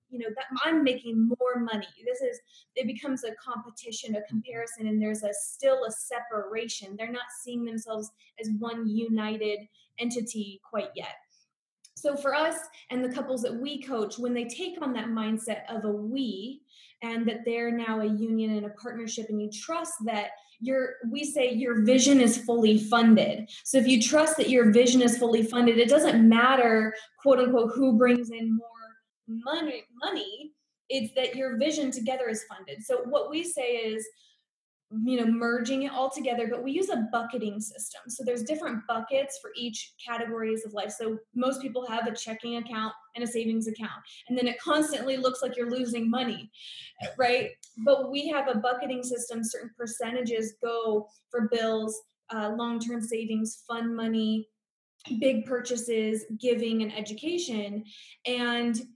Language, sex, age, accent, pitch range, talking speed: English, female, 20-39, American, 220-255 Hz, 170 wpm